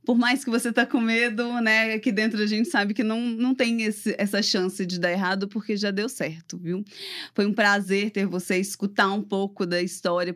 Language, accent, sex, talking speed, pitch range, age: English, Brazilian, female, 220 wpm, 195-225 Hz, 20-39